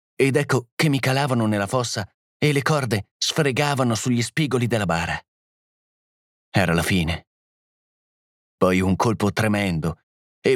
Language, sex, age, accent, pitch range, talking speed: Italian, male, 30-49, native, 100-135 Hz, 130 wpm